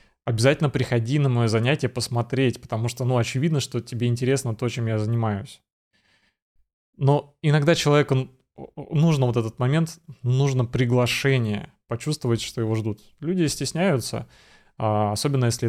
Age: 20-39